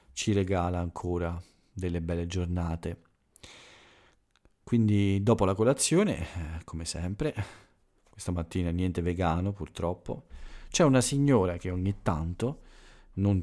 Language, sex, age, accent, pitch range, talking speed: Italian, male, 40-59, native, 85-105 Hz, 105 wpm